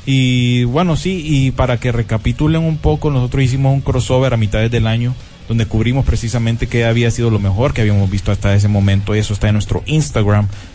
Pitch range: 105-130 Hz